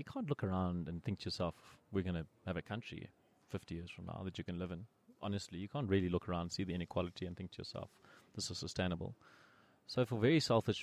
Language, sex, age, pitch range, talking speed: English, male, 30-49, 90-115 Hz, 245 wpm